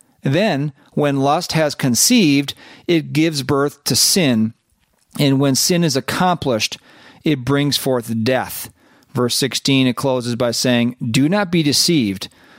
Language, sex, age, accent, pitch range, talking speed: English, male, 40-59, American, 125-155 Hz, 140 wpm